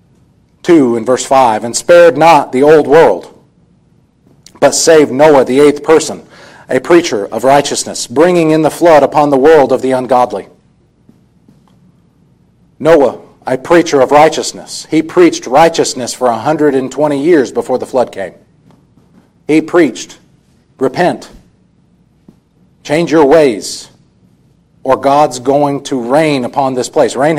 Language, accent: English, American